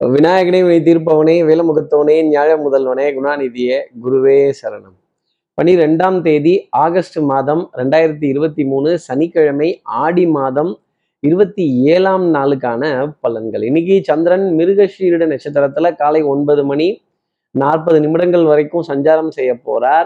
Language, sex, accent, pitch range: Tamil, male, native, 150-185 Hz